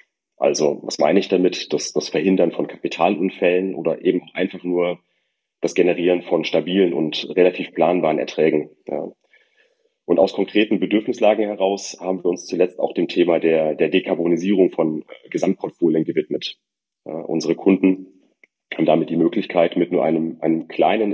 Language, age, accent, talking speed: German, 30-49, German, 145 wpm